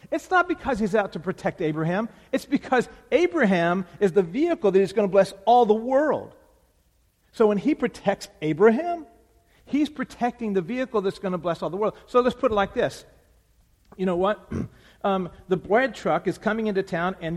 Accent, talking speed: American, 195 wpm